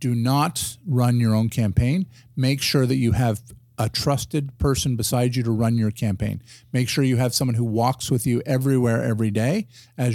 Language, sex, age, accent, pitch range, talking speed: English, male, 50-69, American, 115-130 Hz, 195 wpm